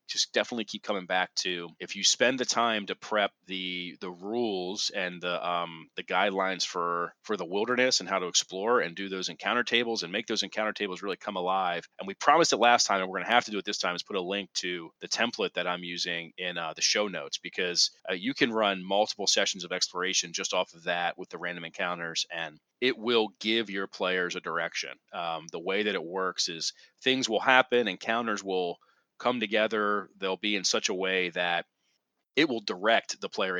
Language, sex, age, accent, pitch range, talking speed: English, male, 30-49, American, 90-110 Hz, 220 wpm